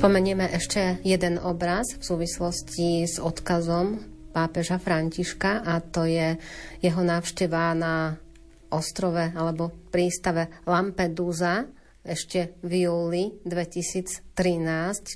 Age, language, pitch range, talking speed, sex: 30-49, Slovak, 160-180 Hz, 95 wpm, female